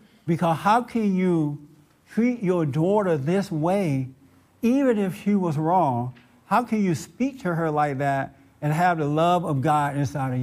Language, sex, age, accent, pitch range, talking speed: English, male, 60-79, American, 130-200 Hz, 175 wpm